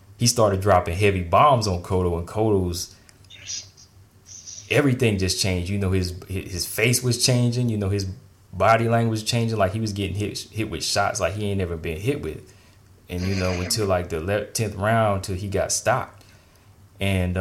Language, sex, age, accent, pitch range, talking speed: English, male, 20-39, American, 95-105 Hz, 185 wpm